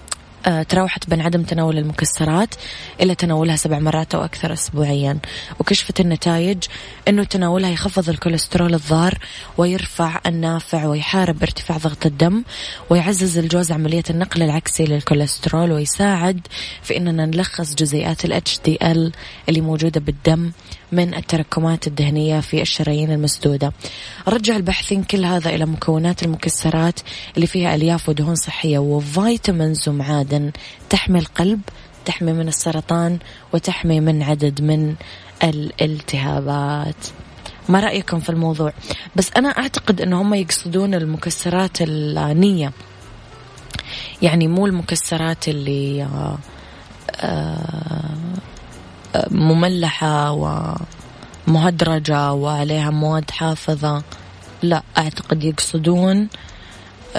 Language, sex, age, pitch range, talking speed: English, female, 20-39, 150-175 Hz, 100 wpm